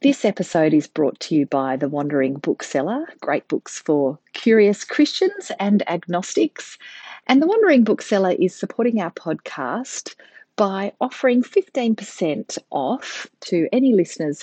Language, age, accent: English, 40-59, Australian